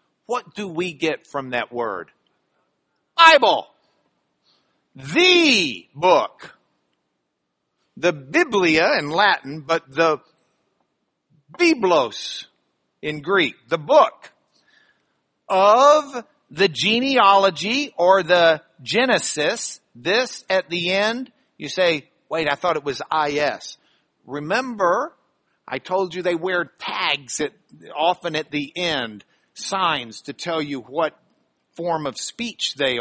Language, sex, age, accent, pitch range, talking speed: English, male, 50-69, American, 145-205 Hz, 105 wpm